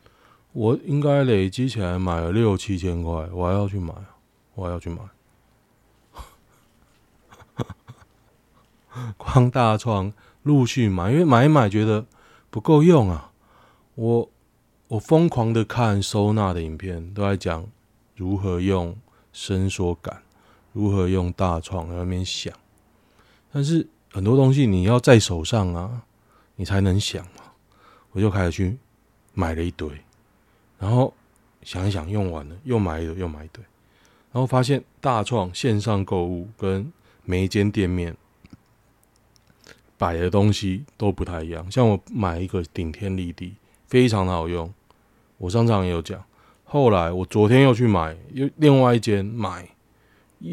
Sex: male